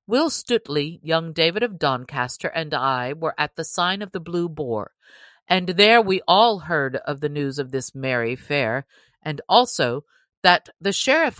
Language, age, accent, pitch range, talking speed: English, 50-69, American, 135-180 Hz, 175 wpm